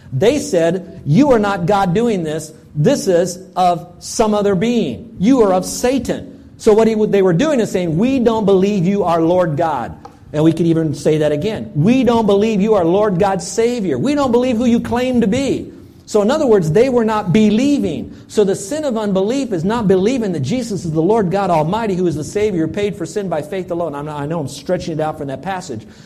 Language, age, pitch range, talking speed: English, 50-69, 160-215 Hz, 230 wpm